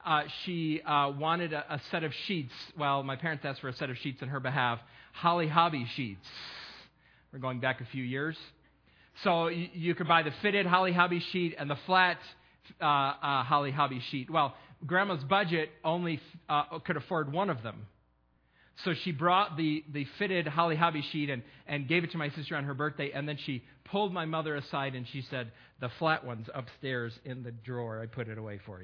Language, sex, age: English, male, 40-59